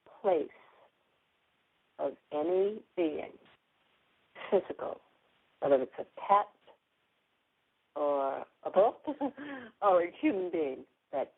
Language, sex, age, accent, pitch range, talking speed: English, female, 60-79, American, 140-200 Hz, 90 wpm